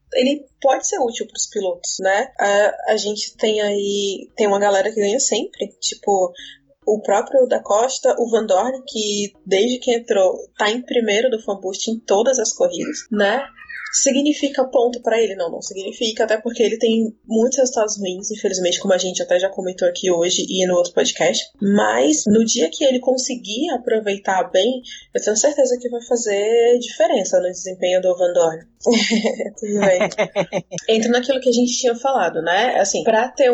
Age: 20-39